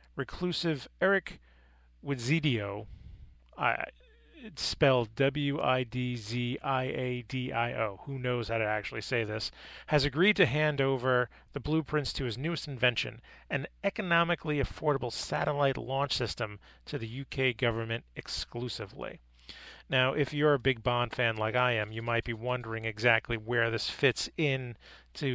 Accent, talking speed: American, 135 wpm